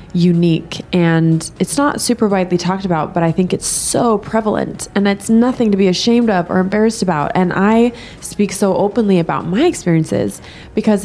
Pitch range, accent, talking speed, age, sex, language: 160-190 Hz, American, 180 wpm, 20-39, female, English